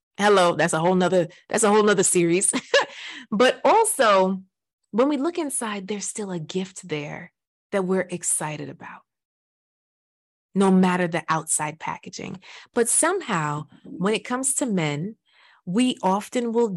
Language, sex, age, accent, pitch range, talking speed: English, female, 30-49, American, 160-210 Hz, 145 wpm